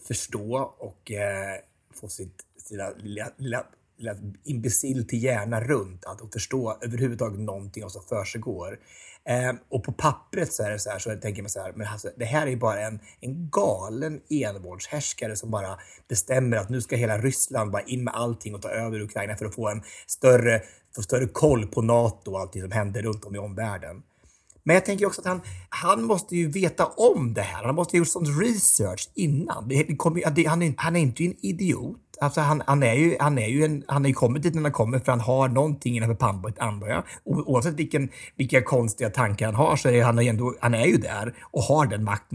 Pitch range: 110-150 Hz